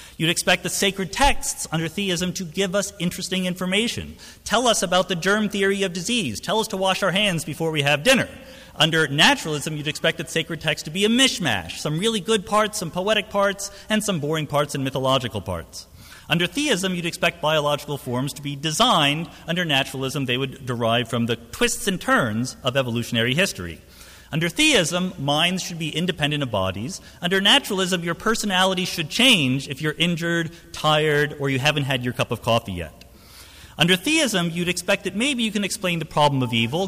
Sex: male